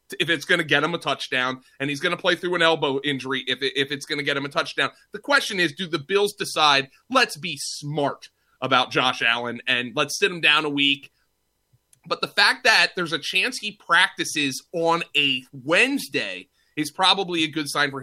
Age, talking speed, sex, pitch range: 30-49, 215 wpm, male, 140-195 Hz